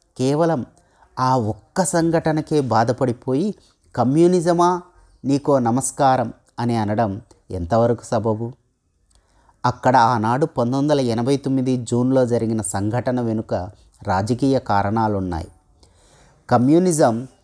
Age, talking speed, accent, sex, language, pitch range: 30-49, 85 wpm, native, male, Telugu, 110-140 Hz